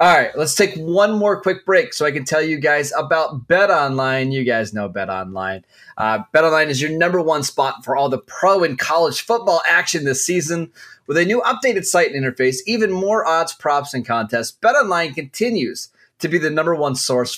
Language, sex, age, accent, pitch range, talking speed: English, male, 20-39, American, 125-165 Hz, 195 wpm